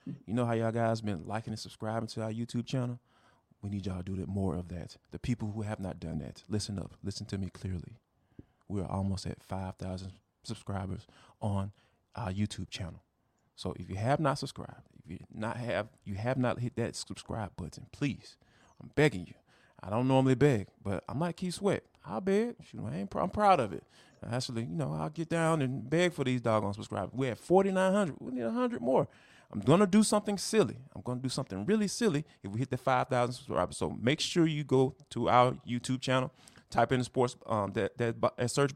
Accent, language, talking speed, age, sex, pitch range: American, English, 220 wpm, 30-49, male, 105-155 Hz